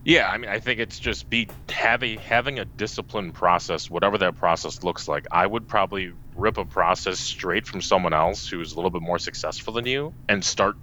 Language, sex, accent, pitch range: English, male, American, 90-110 Hz